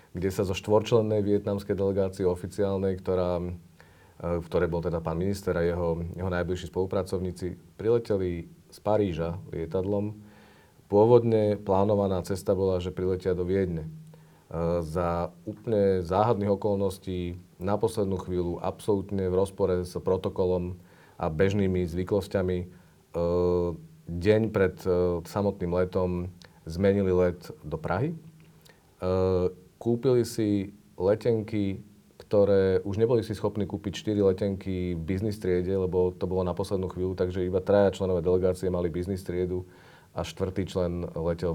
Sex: male